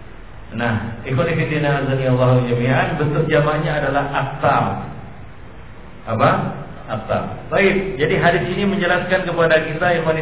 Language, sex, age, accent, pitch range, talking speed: Indonesian, male, 50-69, native, 145-190 Hz, 95 wpm